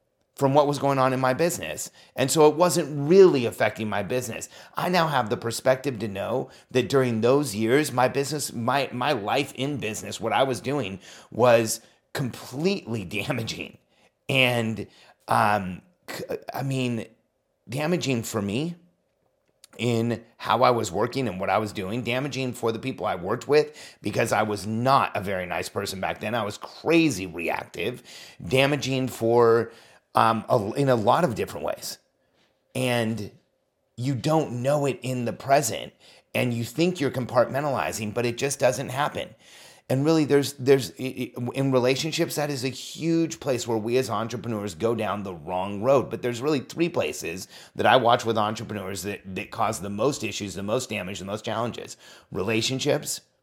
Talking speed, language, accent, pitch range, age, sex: 165 wpm, English, American, 110-140 Hz, 30-49, male